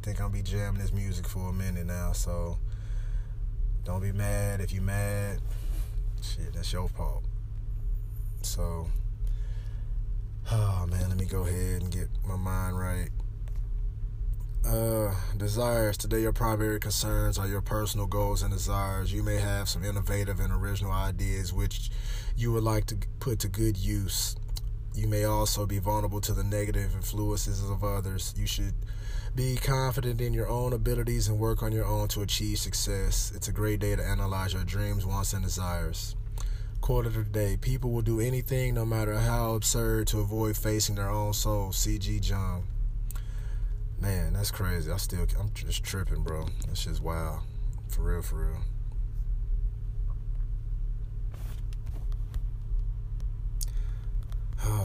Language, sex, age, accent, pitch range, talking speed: English, male, 20-39, American, 100-110 Hz, 150 wpm